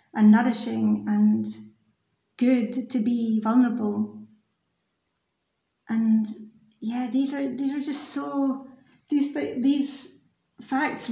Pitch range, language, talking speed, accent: 220-255 Hz, English, 95 wpm, British